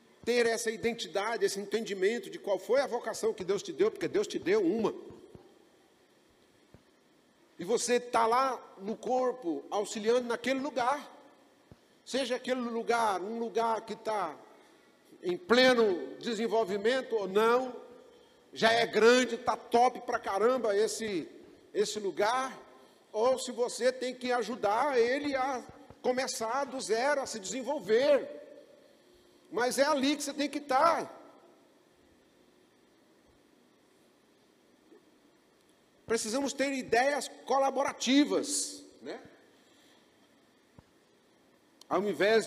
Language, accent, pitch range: Portuguese, Brazilian, 225-320 Hz